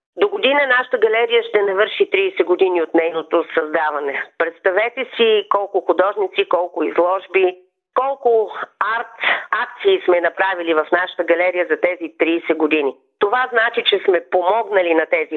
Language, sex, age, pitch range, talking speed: Bulgarian, female, 40-59, 180-255 Hz, 140 wpm